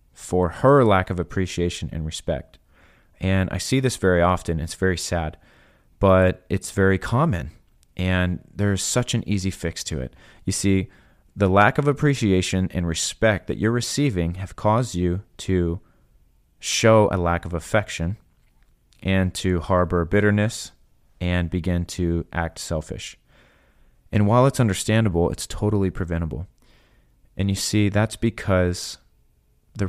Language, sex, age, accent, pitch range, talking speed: English, male, 30-49, American, 85-105 Hz, 140 wpm